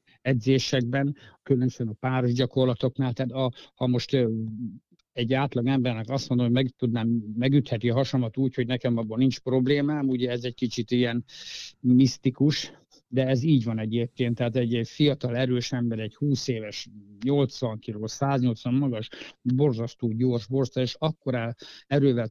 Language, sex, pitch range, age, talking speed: Hungarian, male, 120-140 Hz, 60-79, 145 wpm